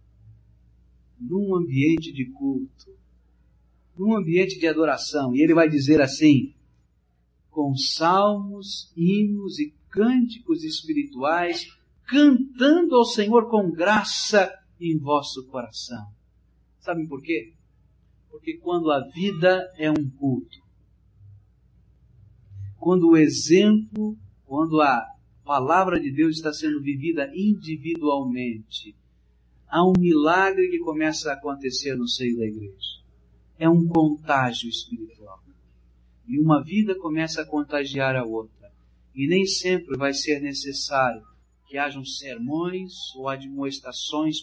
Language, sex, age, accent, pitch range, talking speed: Spanish, male, 60-79, Brazilian, 115-190 Hz, 110 wpm